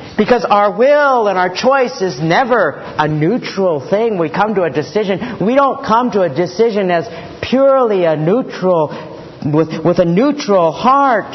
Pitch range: 190-255 Hz